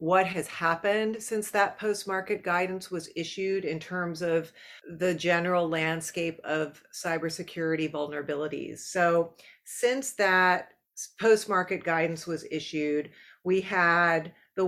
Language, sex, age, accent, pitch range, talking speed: English, female, 40-59, American, 160-195 Hz, 115 wpm